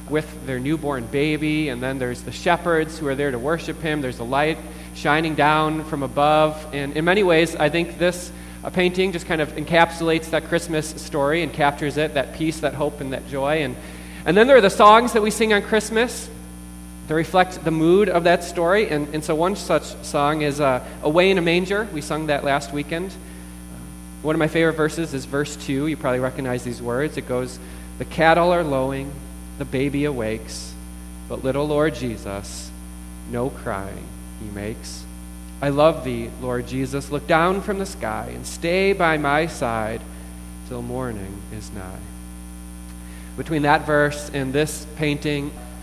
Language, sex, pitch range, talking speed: English, male, 100-160 Hz, 180 wpm